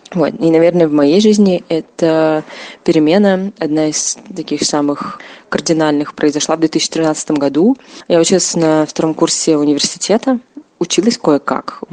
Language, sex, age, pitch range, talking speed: Russian, female, 20-39, 145-170 Hz, 130 wpm